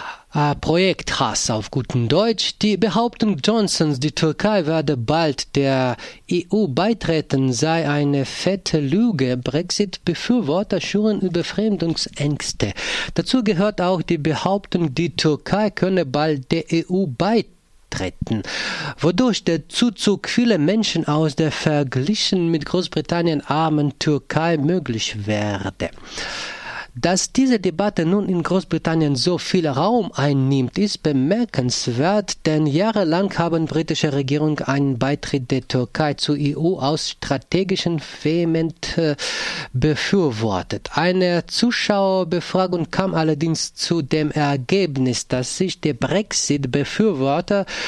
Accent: German